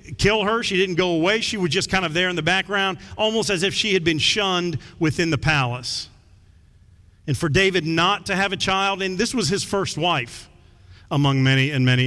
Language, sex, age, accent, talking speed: English, male, 40-59, American, 215 wpm